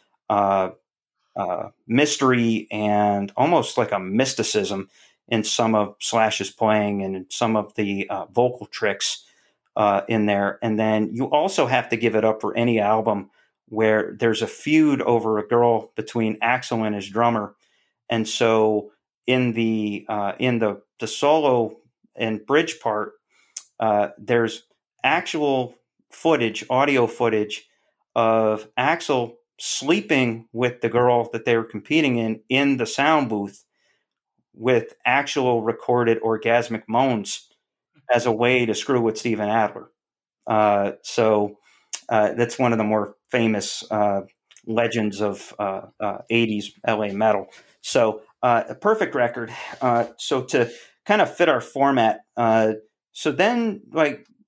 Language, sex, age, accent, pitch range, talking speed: English, male, 40-59, American, 105-120 Hz, 140 wpm